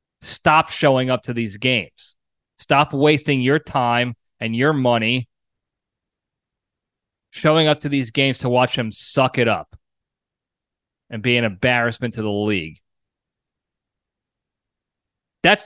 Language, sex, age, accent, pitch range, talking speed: English, male, 30-49, American, 130-180 Hz, 125 wpm